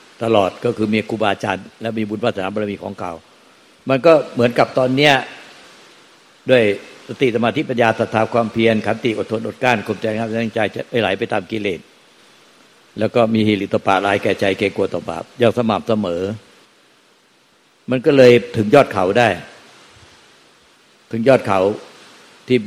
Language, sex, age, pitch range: Thai, male, 60-79, 105-120 Hz